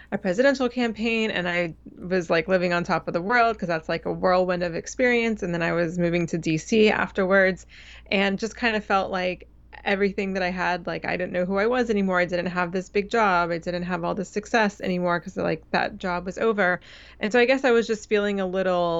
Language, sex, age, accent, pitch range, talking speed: English, female, 20-39, American, 175-210 Hz, 235 wpm